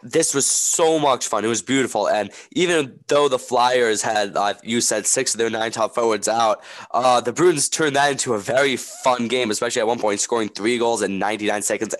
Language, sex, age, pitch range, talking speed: English, male, 10-29, 110-140 Hz, 220 wpm